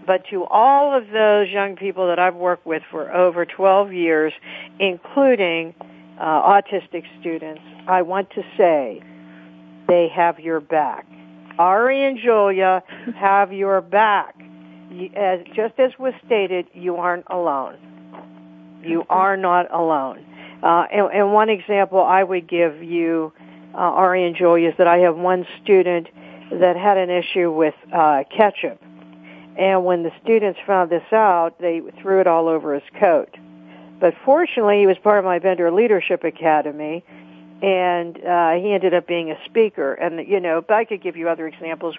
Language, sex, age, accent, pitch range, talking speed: English, female, 60-79, American, 160-200 Hz, 165 wpm